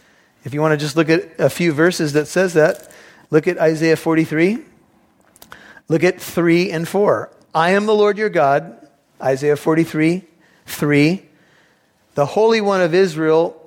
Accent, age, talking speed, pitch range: American, 40-59, 160 wpm, 145-170 Hz